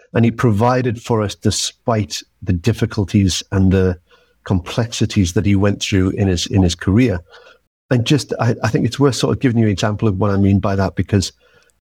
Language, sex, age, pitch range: English, male, 50-69, 95-115 Hz